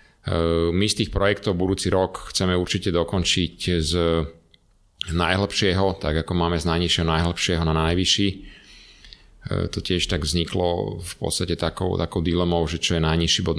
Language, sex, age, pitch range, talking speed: Slovak, male, 40-59, 80-90 Hz, 145 wpm